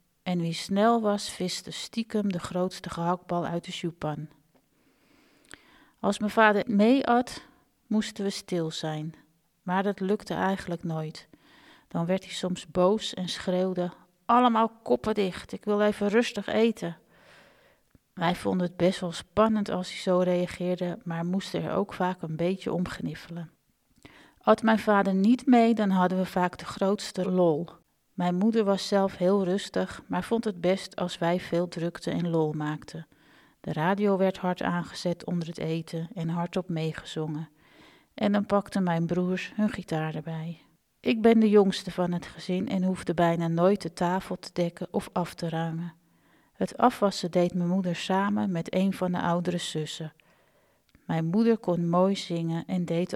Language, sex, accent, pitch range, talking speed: Dutch, female, Dutch, 170-200 Hz, 165 wpm